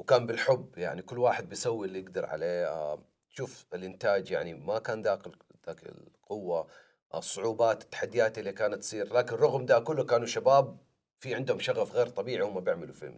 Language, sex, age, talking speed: Arabic, male, 40-59, 165 wpm